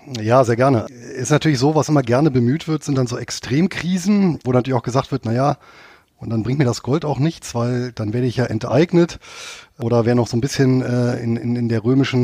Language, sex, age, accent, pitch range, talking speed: German, male, 30-49, German, 120-150 Hz, 235 wpm